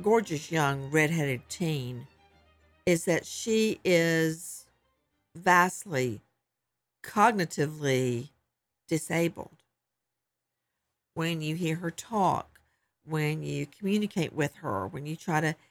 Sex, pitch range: female, 150-190 Hz